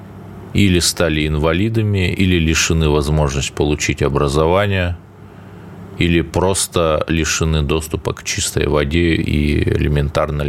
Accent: native